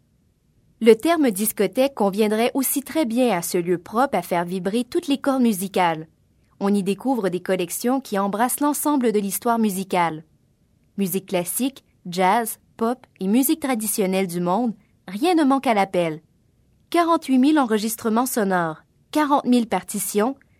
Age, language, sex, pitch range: 20-39, French, female, 190-265 Hz